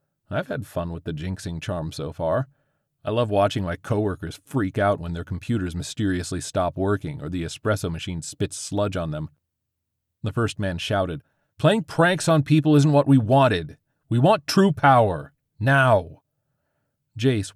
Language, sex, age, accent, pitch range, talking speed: English, male, 30-49, American, 95-135 Hz, 165 wpm